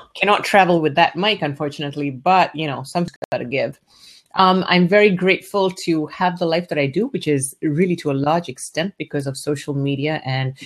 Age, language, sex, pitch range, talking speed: 30-49, English, female, 140-180 Hz, 195 wpm